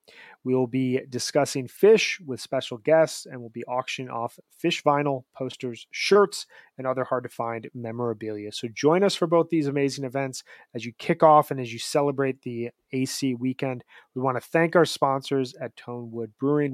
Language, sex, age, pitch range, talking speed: English, male, 30-49, 120-155 Hz, 175 wpm